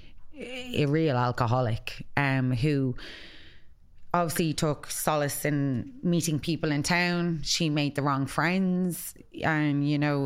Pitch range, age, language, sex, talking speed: 125-145 Hz, 20-39, English, female, 125 wpm